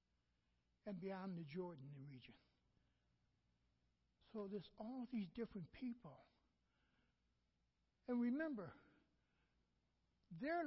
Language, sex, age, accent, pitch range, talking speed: English, male, 60-79, American, 205-260 Hz, 80 wpm